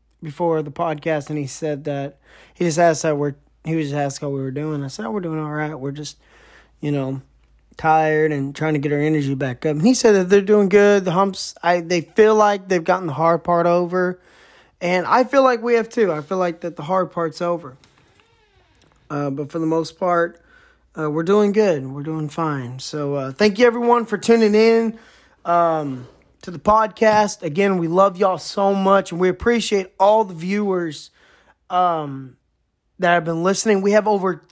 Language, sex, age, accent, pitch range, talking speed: English, male, 20-39, American, 155-200 Hz, 200 wpm